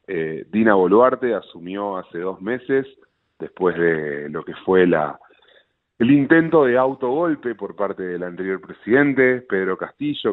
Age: 30-49